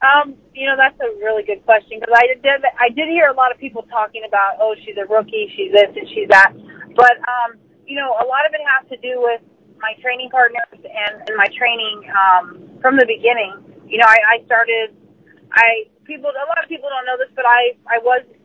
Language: English